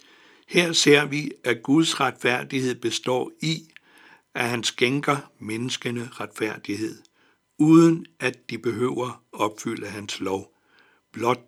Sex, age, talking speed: male, 60-79, 110 wpm